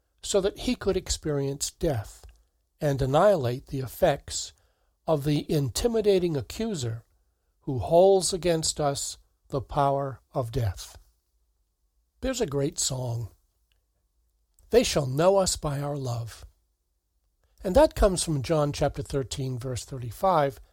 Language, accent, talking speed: English, American, 120 wpm